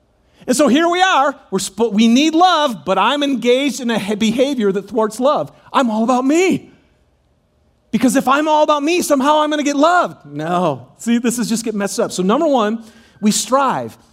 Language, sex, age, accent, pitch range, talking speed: English, male, 40-59, American, 210-280 Hz, 205 wpm